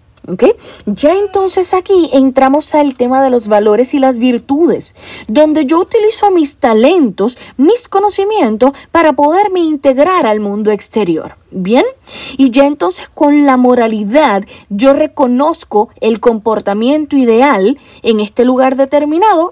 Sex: female